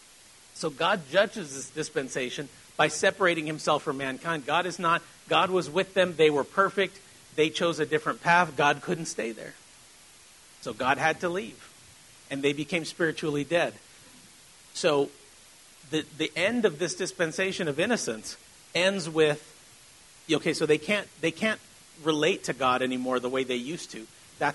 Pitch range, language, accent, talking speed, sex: 145-185 Hz, English, American, 165 wpm, male